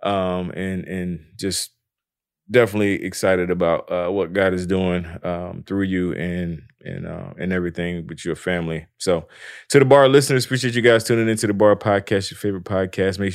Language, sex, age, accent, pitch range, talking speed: English, male, 20-39, American, 95-110 Hz, 180 wpm